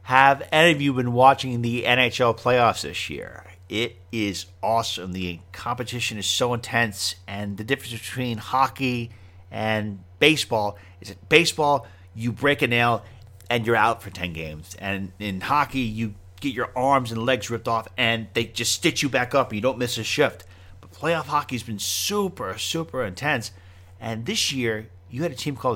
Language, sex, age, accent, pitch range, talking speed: English, male, 40-59, American, 95-130 Hz, 185 wpm